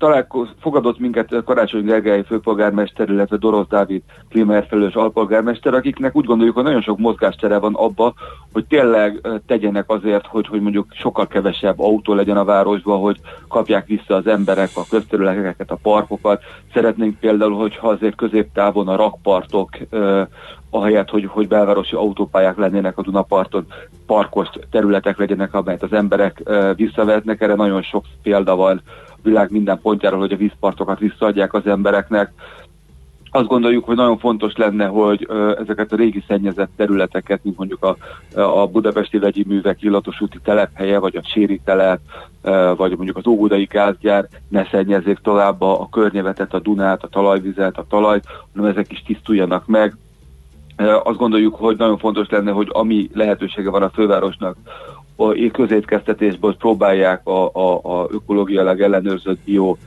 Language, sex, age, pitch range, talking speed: Hungarian, male, 40-59, 100-110 Hz, 145 wpm